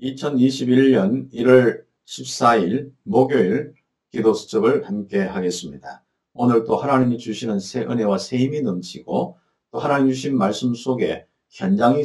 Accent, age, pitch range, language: native, 50-69, 110-170 Hz, Korean